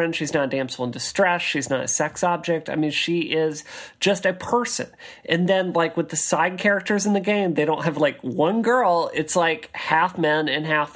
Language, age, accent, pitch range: English, 40-59, American, 155-200 Hz